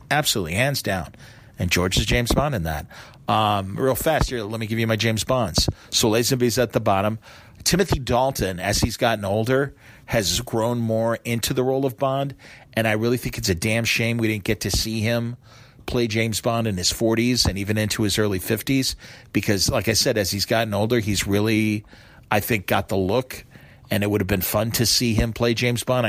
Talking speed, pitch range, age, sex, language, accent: 215 wpm, 105-120 Hz, 40-59, male, English, American